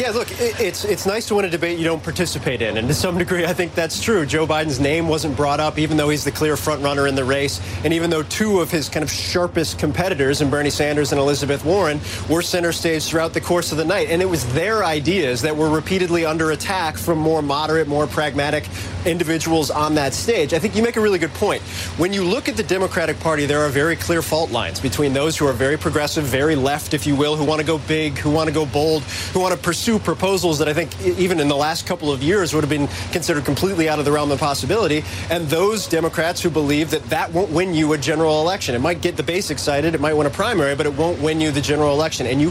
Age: 30-49